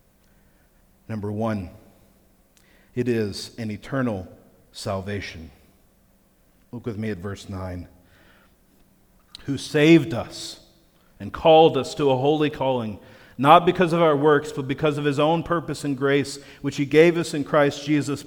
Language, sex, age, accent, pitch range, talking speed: English, male, 40-59, American, 115-160 Hz, 140 wpm